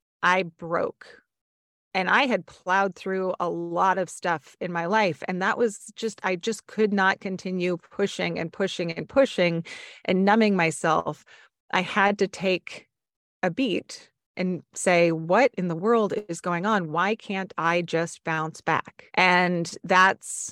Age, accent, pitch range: 30-49, American, 170-195 Hz